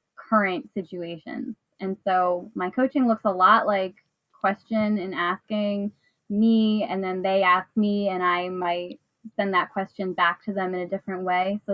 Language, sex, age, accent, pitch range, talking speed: English, female, 10-29, American, 185-220 Hz, 170 wpm